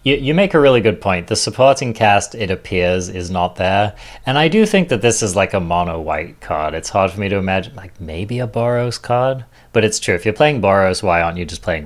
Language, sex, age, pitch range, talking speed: English, male, 30-49, 90-115 Hz, 255 wpm